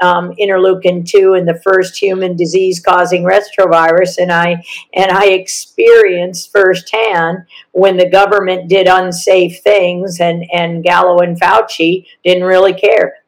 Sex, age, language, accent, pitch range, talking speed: female, 50-69, English, American, 165-190 Hz, 120 wpm